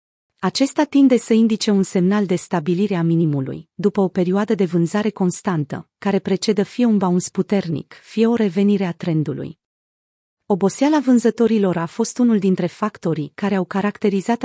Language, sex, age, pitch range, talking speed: Romanian, female, 30-49, 180-225 Hz, 155 wpm